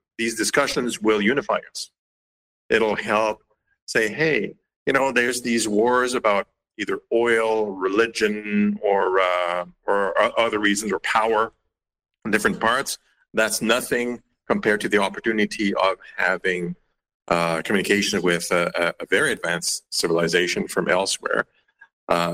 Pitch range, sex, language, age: 100-125 Hz, male, English, 50-69